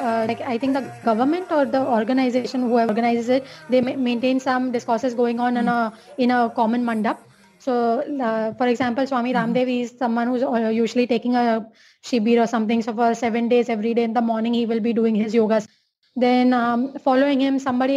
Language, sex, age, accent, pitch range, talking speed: English, female, 20-39, Indian, 230-265 Hz, 200 wpm